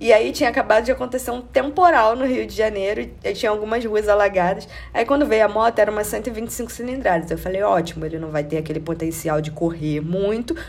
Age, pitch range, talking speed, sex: 20-39, 190-275 Hz, 215 wpm, female